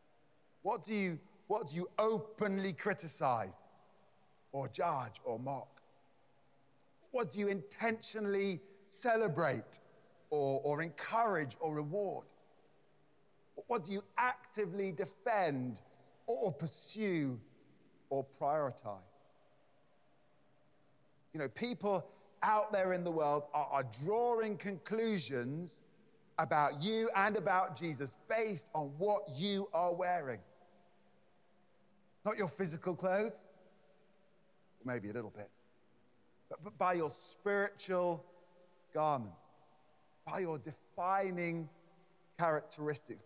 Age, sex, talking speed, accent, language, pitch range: 40-59, male, 95 wpm, British, English, 145-195 Hz